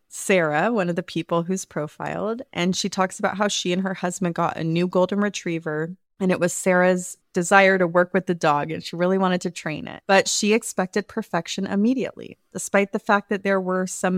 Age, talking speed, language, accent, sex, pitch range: 30-49, 210 wpm, English, American, female, 165-200 Hz